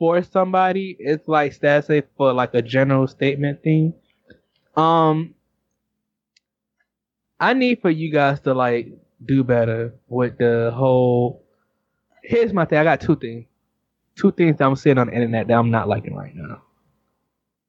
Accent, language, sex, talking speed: American, English, male, 155 wpm